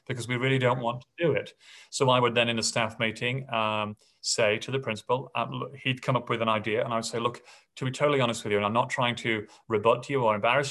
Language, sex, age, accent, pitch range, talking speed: English, male, 30-49, British, 115-140 Hz, 275 wpm